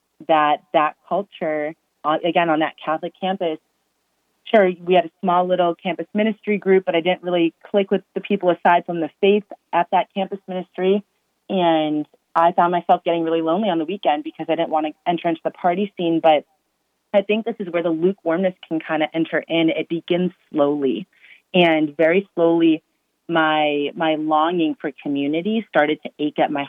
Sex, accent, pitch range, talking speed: female, American, 155-180 Hz, 185 wpm